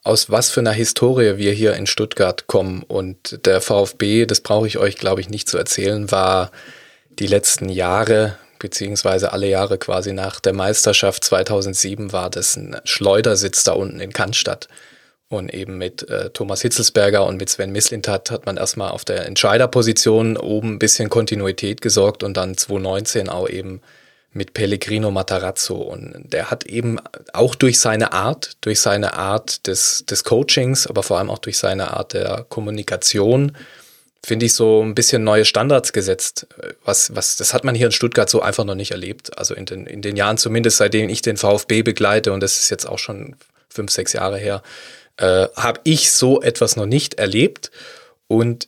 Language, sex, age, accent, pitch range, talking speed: German, male, 20-39, German, 100-120 Hz, 175 wpm